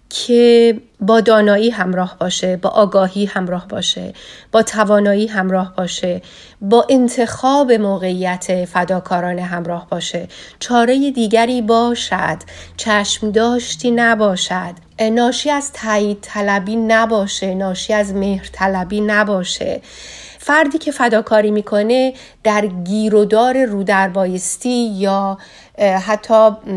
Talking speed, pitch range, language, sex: 95 wpm, 195-230 Hz, Persian, female